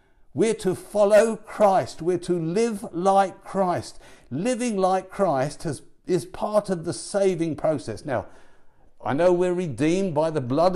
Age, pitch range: 60-79, 145-195 Hz